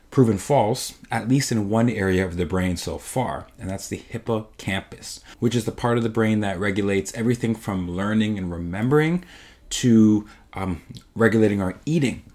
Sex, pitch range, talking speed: male, 95-120 Hz, 170 wpm